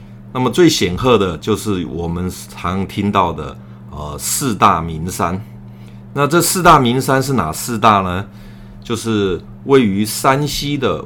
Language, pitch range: Chinese, 85-115 Hz